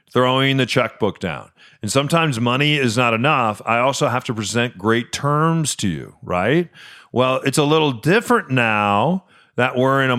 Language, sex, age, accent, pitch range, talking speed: English, male, 40-59, American, 110-135 Hz, 175 wpm